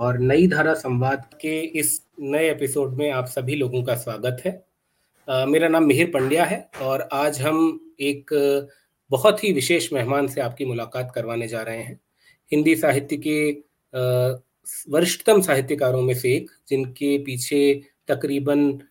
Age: 30-49